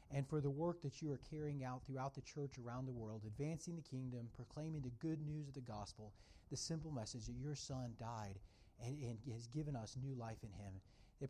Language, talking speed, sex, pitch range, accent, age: English, 220 wpm, male, 130-180 Hz, American, 40-59